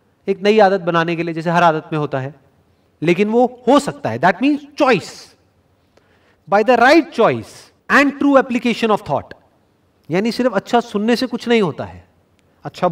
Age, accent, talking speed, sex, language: 40-59, native, 180 wpm, male, Hindi